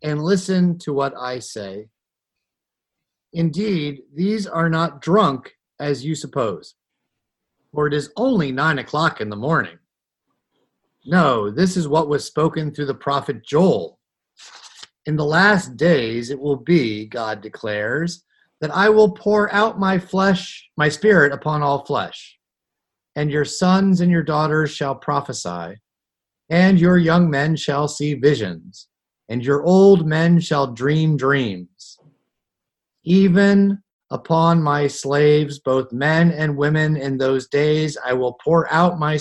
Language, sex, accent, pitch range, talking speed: English, male, American, 135-175 Hz, 140 wpm